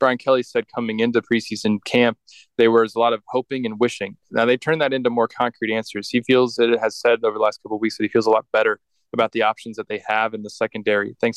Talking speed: 270 wpm